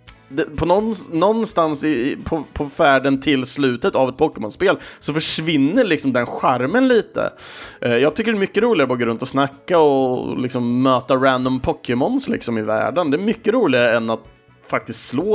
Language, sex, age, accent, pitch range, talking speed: Swedish, male, 30-49, Norwegian, 125-170 Hz, 175 wpm